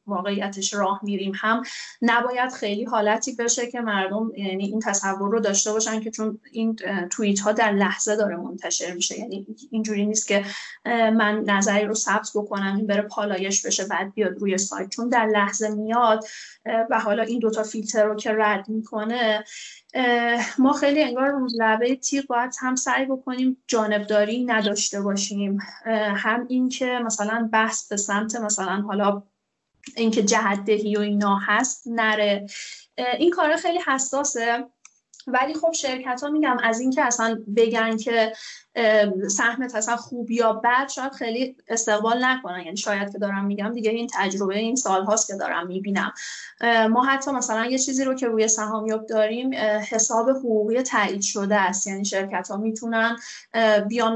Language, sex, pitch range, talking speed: Persian, female, 205-235 Hz, 155 wpm